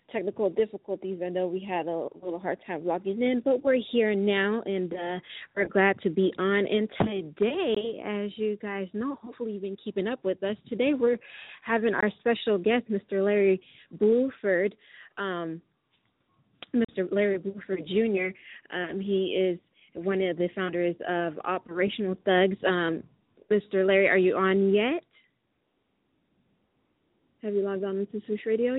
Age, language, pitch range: 20-39, English, 180-210 Hz